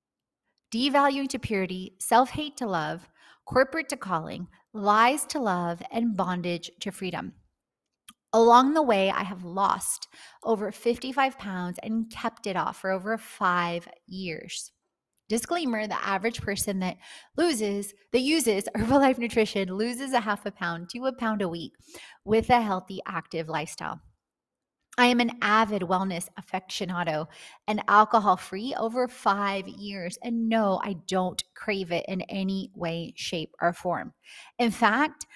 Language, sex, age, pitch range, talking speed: English, female, 30-49, 190-245 Hz, 140 wpm